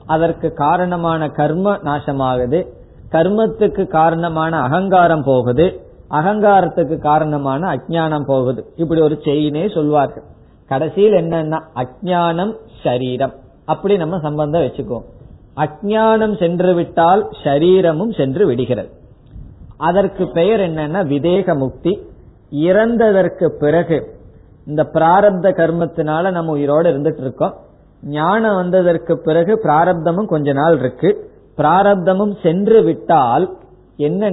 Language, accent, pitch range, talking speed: Tamil, native, 145-185 Hz, 90 wpm